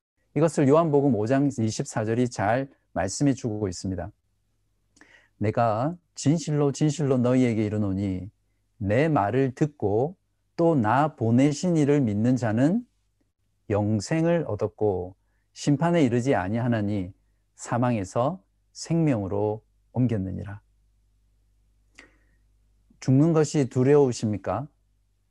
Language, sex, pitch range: Korean, male, 100-140 Hz